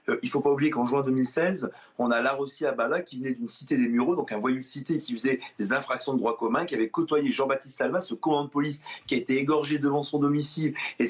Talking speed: 260 wpm